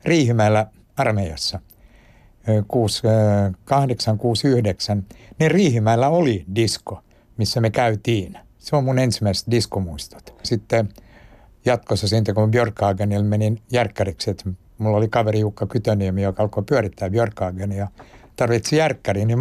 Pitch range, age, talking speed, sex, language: 100-120 Hz, 60-79, 110 wpm, male, Finnish